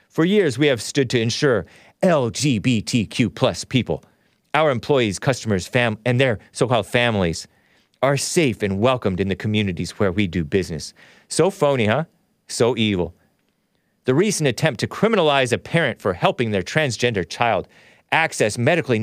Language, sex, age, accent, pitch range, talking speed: English, male, 40-59, American, 105-150 Hz, 150 wpm